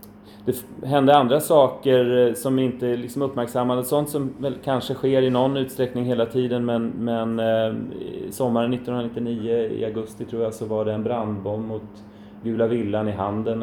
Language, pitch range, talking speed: Swedish, 105-125 Hz, 165 wpm